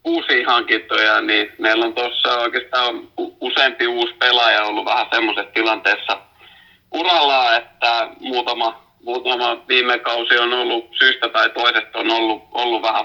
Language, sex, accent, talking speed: Finnish, male, native, 135 wpm